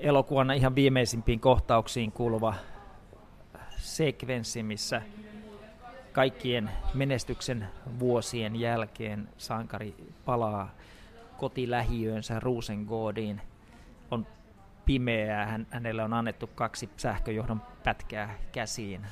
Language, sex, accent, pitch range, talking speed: Finnish, male, native, 110-130 Hz, 75 wpm